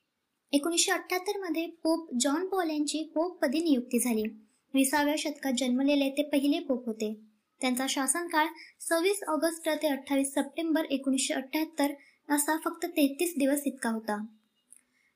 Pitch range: 270-325 Hz